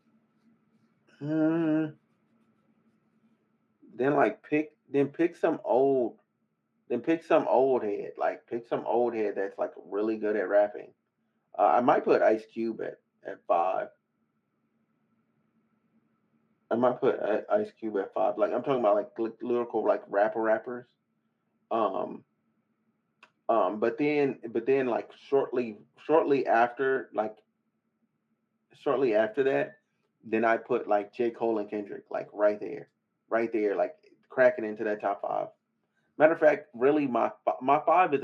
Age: 30-49